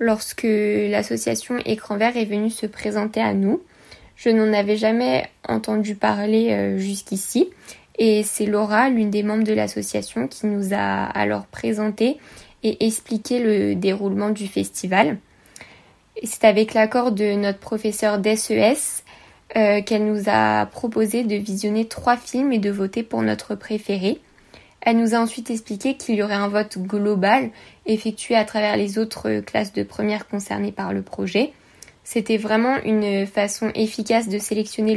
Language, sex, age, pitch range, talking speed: French, female, 10-29, 200-225 Hz, 150 wpm